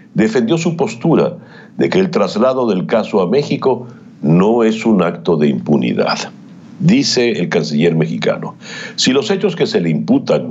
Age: 60-79